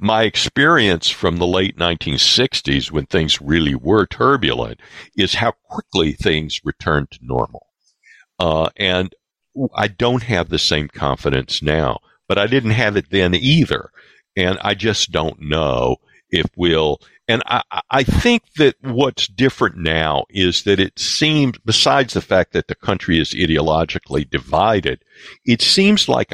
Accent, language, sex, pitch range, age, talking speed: American, English, male, 75-105 Hz, 60-79, 150 wpm